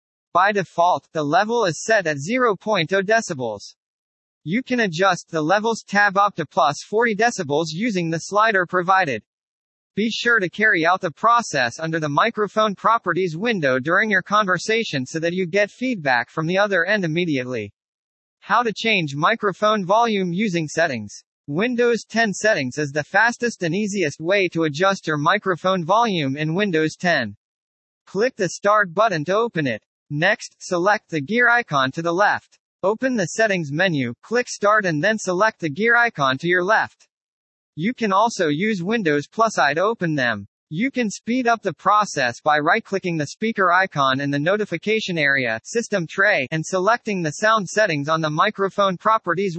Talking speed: 170 wpm